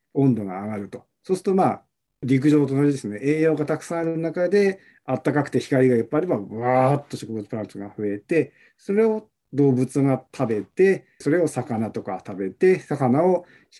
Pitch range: 115-170 Hz